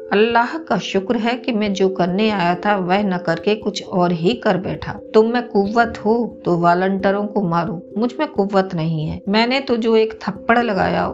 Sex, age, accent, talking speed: female, 50-69, native, 200 wpm